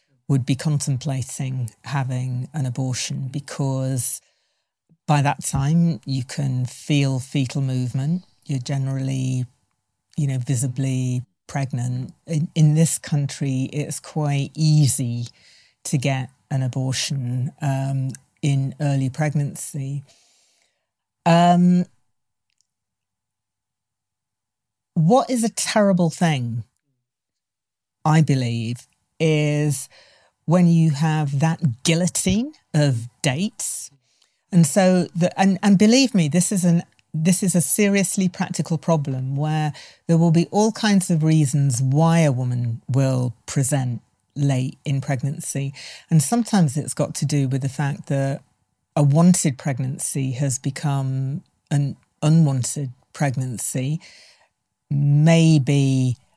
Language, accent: English, British